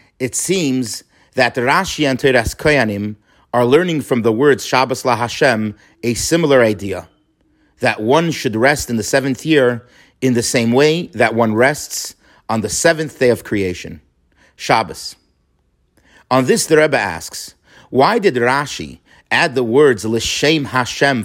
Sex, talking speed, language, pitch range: male, 145 wpm, English, 110-145 Hz